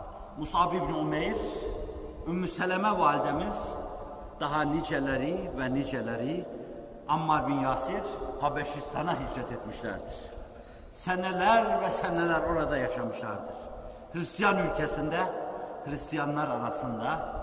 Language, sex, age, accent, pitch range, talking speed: Turkish, male, 50-69, native, 150-215 Hz, 85 wpm